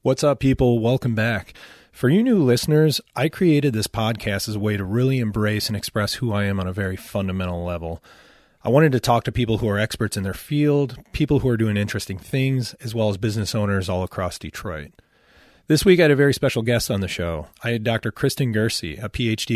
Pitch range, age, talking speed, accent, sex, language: 100-125 Hz, 30-49, 225 wpm, American, male, English